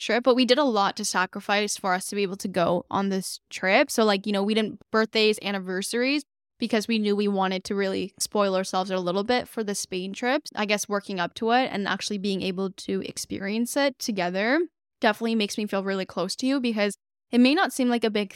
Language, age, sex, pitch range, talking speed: English, 10-29, female, 195-225 Hz, 235 wpm